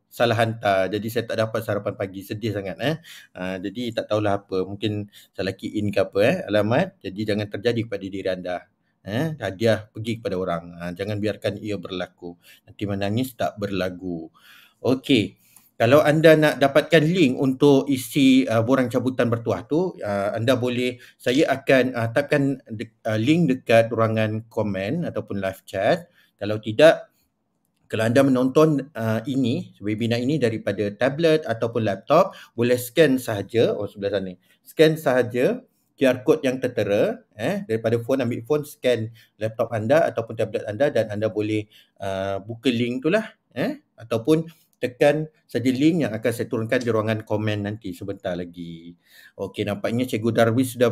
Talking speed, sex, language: 160 wpm, male, Malay